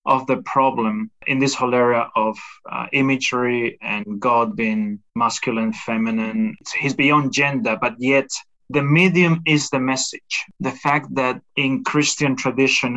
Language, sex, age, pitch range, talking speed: English, male, 20-39, 125-145 Hz, 145 wpm